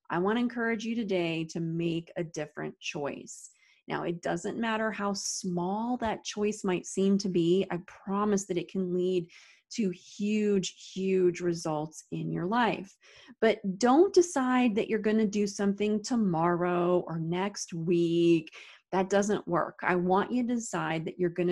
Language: English